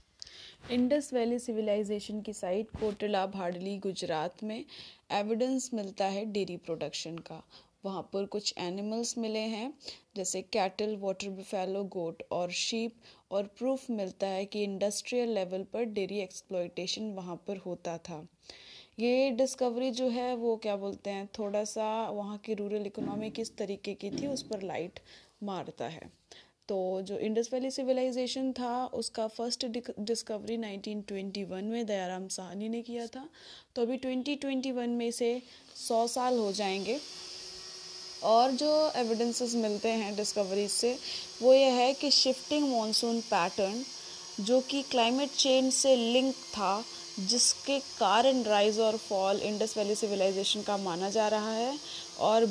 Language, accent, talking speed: Hindi, native, 145 wpm